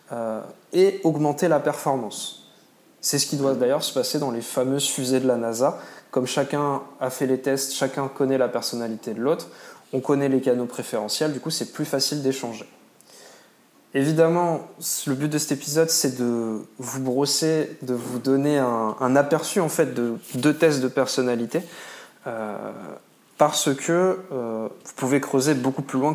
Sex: male